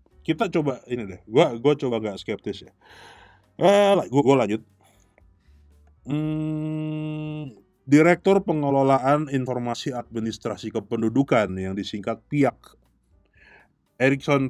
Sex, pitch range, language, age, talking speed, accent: male, 95-135 Hz, Indonesian, 30-49, 100 wpm, native